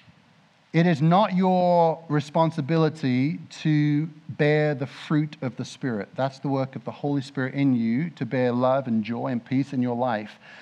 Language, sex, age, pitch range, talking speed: English, male, 50-69, 135-170 Hz, 175 wpm